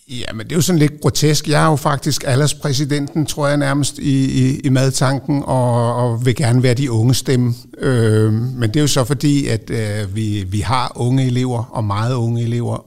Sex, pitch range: male, 110-140 Hz